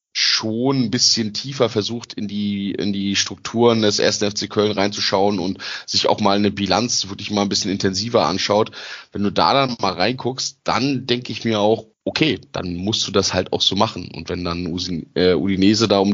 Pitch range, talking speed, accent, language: 95-115 Hz, 200 wpm, German, German